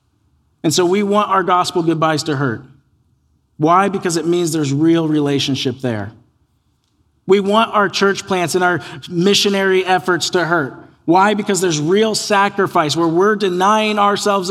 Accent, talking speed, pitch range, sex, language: American, 155 wpm, 135-180 Hz, male, English